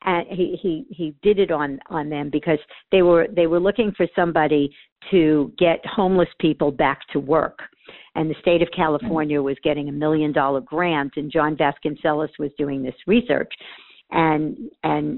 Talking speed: 175 wpm